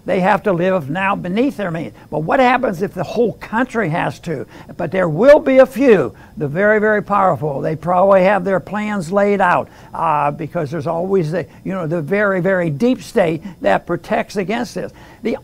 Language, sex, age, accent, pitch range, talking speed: English, male, 60-79, American, 175-220 Hz, 195 wpm